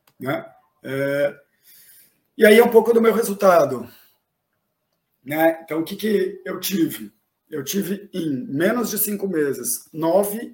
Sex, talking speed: male, 135 wpm